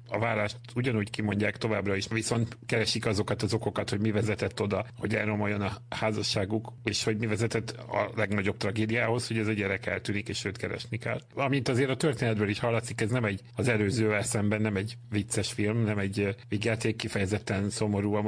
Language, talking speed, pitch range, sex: Hungarian, 185 wpm, 100-115 Hz, male